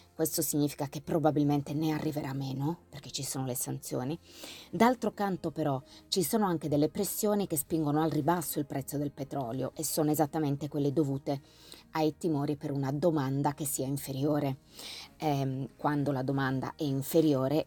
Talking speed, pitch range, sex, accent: 160 wpm, 135-155 Hz, female, native